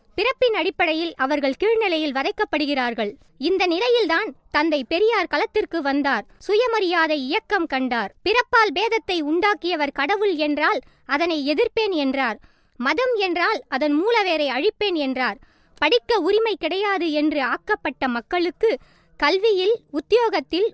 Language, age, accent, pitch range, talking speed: Tamil, 20-39, native, 280-405 Hz, 100 wpm